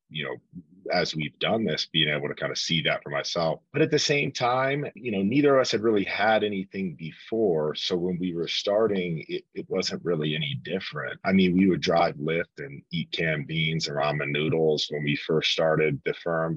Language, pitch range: English, 75-100 Hz